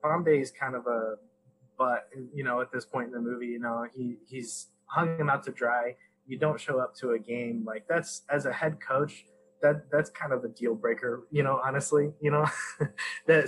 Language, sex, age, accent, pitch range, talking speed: English, male, 20-39, American, 115-145 Hz, 220 wpm